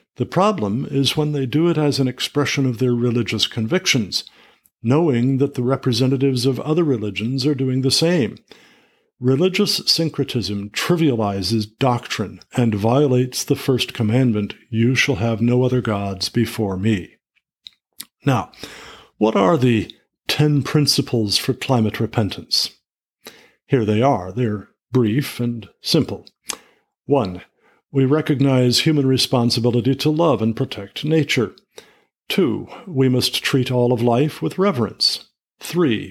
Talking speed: 130 wpm